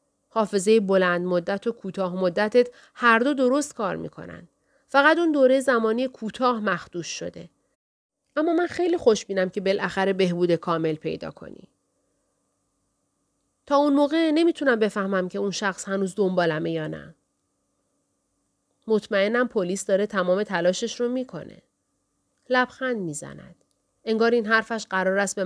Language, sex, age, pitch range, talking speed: Persian, female, 40-59, 185-260 Hz, 130 wpm